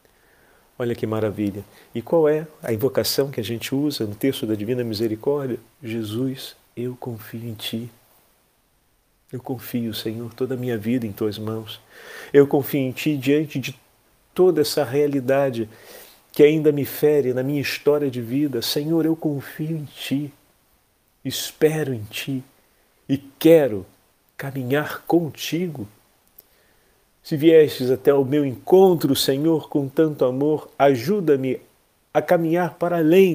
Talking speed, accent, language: 140 wpm, Brazilian, Portuguese